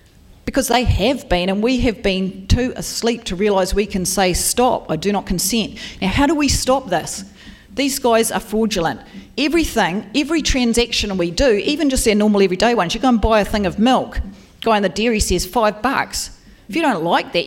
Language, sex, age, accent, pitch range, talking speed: English, female, 40-59, Australian, 185-235 Hz, 215 wpm